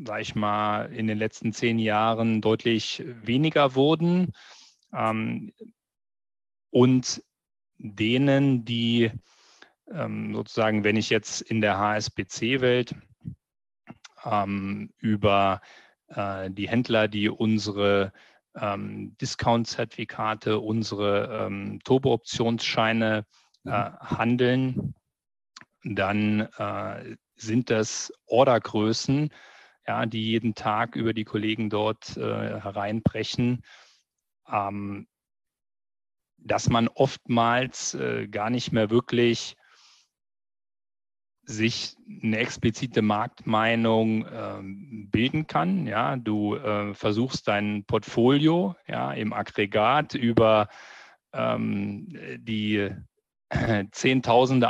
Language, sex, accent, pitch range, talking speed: German, male, German, 105-125 Hz, 85 wpm